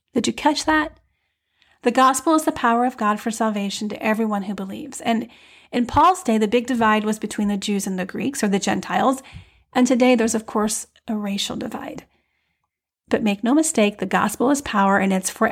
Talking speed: 205 wpm